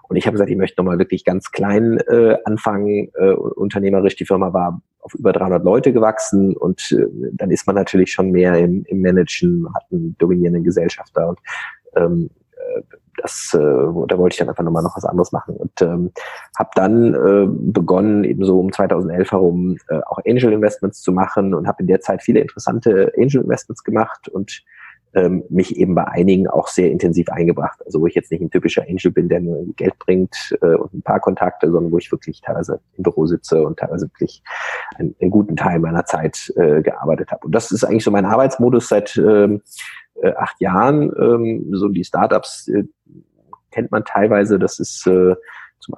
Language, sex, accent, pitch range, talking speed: German, male, German, 90-115 Hz, 185 wpm